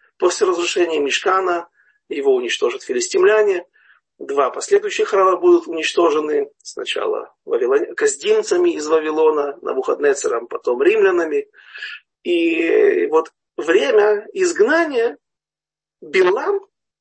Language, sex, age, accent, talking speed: Russian, male, 40-59, native, 85 wpm